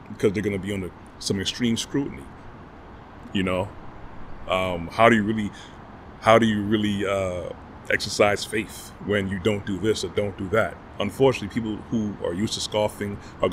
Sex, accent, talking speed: male, American, 165 wpm